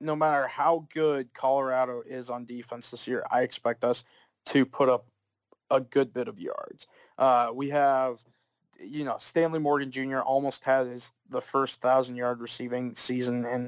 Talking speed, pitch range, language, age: 165 wpm, 125-140 Hz, English, 20-39